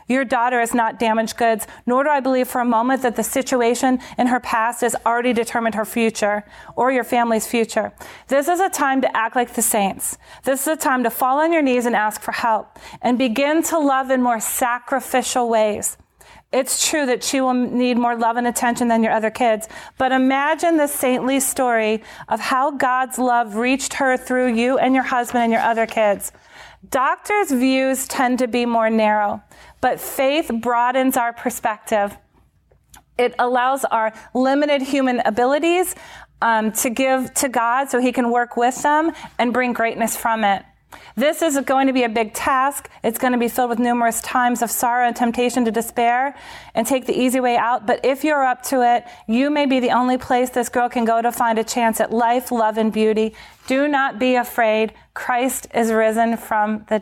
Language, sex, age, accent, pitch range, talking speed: English, female, 40-59, American, 230-260 Hz, 200 wpm